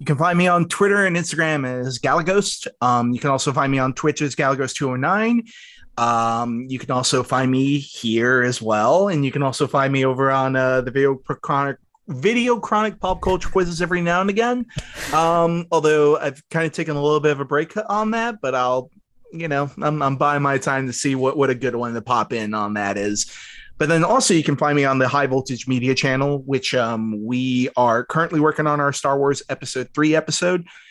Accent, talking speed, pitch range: American, 225 wpm, 125-155 Hz